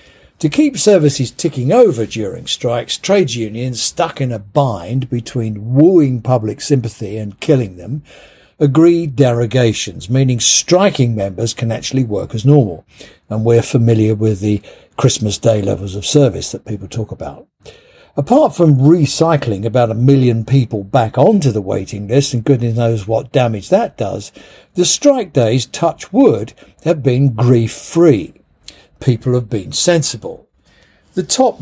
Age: 60-79